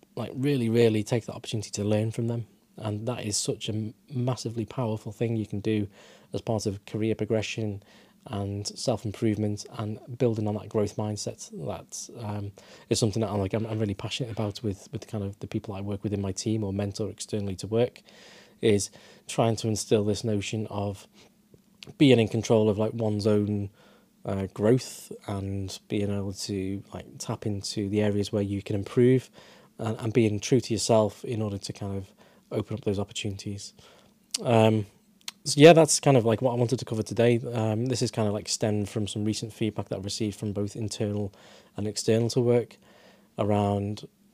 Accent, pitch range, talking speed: British, 105-115 Hz, 195 wpm